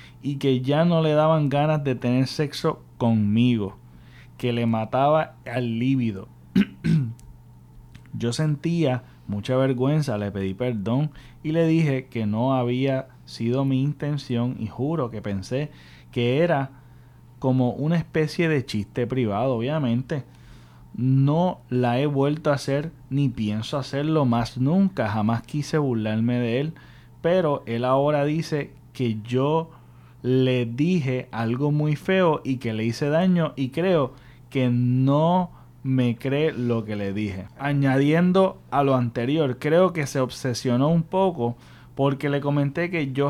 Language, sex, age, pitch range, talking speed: Spanish, male, 30-49, 120-155 Hz, 140 wpm